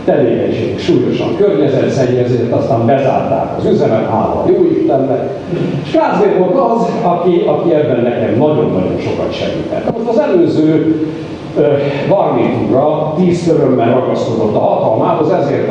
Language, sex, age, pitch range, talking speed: Hungarian, male, 60-79, 130-170 Hz, 120 wpm